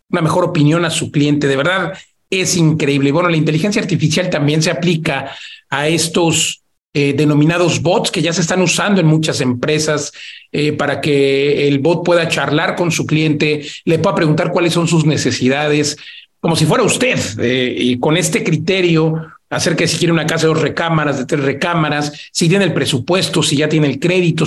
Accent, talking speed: Mexican, 190 wpm